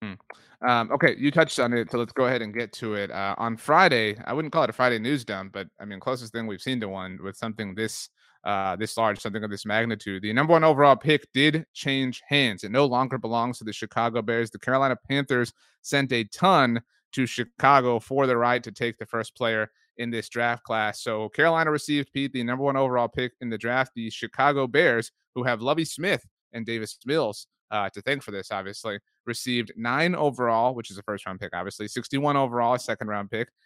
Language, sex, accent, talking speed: English, male, American, 220 wpm